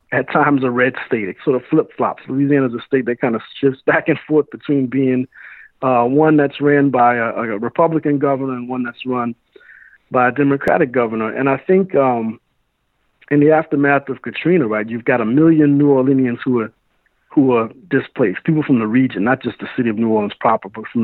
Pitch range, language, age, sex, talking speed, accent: 120-150 Hz, English, 50-69, male, 210 wpm, American